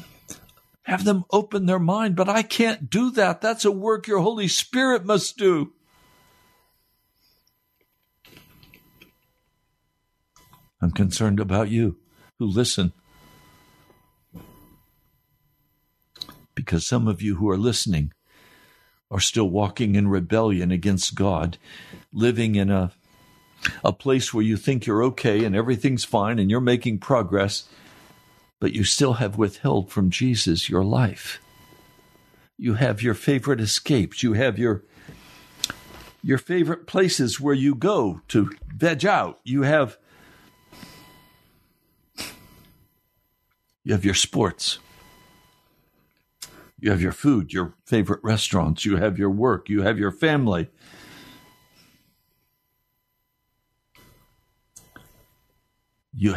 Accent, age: American, 60-79